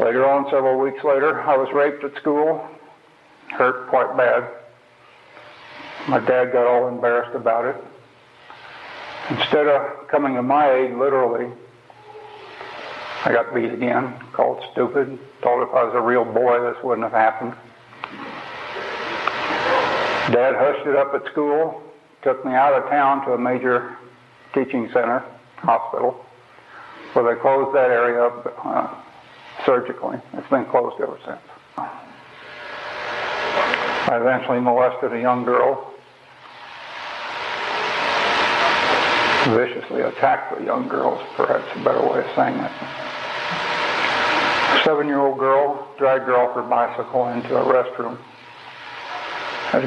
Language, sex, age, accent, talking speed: English, male, 60-79, American, 125 wpm